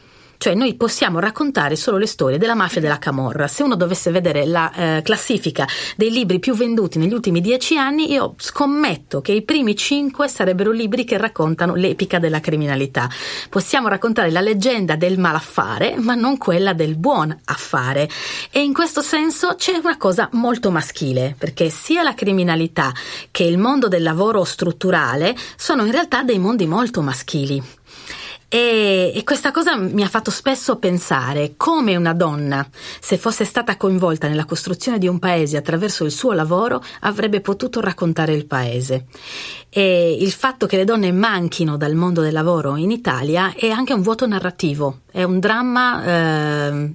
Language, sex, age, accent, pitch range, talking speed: Italian, female, 30-49, native, 155-225 Hz, 165 wpm